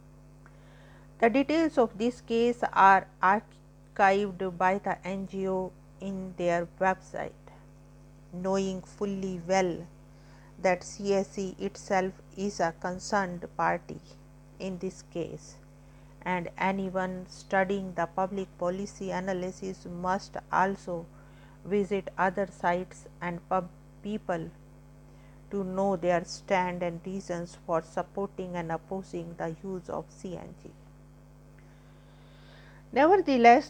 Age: 50-69